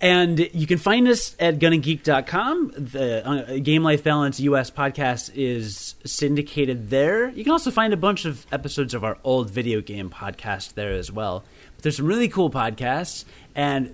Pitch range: 120-165 Hz